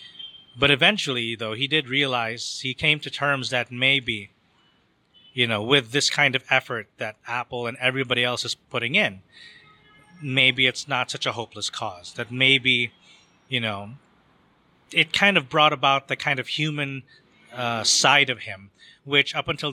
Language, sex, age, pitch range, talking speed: English, male, 30-49, 125-150 Hz, 165 wpm